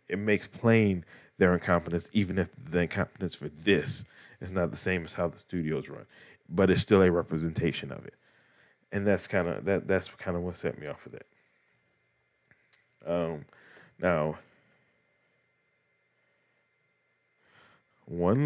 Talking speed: 135 wpm